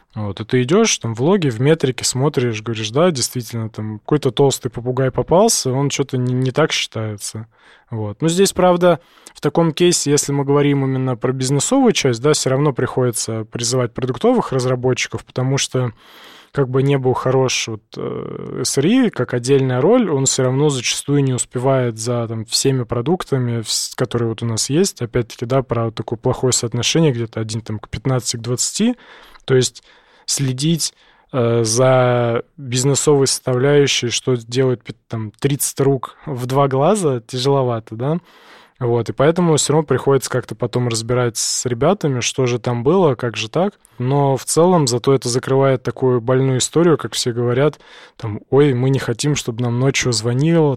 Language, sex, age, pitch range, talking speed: Russian, male, 20-39, 120-140 Hz, 165 wpm